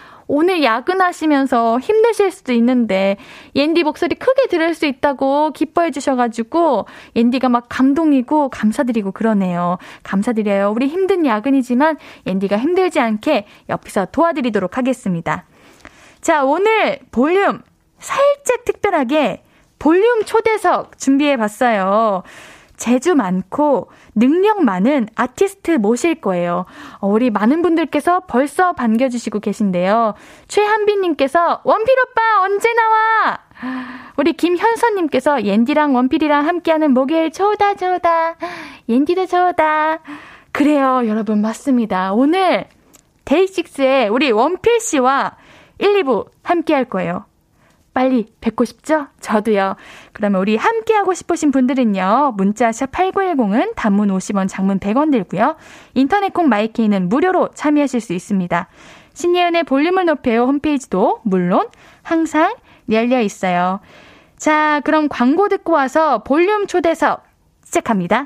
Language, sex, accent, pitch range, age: Korean, female, native, 230-340 Hz, 10-29